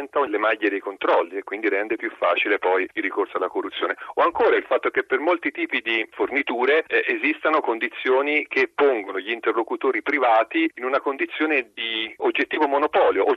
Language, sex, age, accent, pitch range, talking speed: Italian, male, 40-59, native, 330-415 Hz, 175 wpm